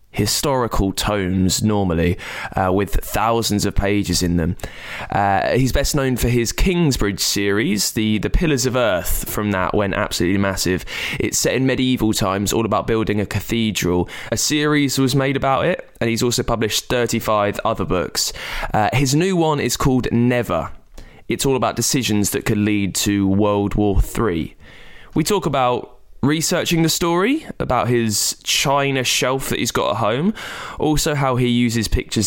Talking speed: 165 wpm